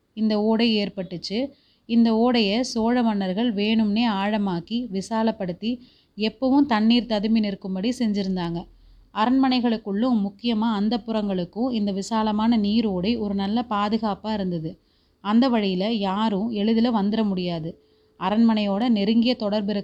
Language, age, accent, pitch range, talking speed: Tamil, 30-49, native, 195-230 Hz, 105 wpm